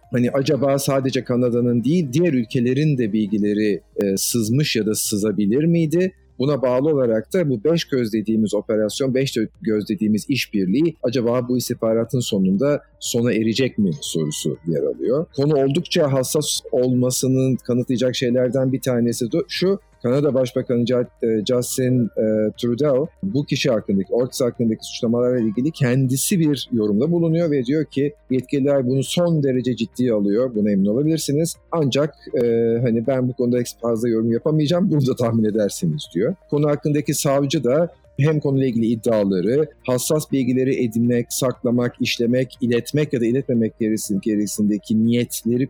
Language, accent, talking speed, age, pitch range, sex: Turkish, native, 140 wpm, 50-69, 115-145 Hz, male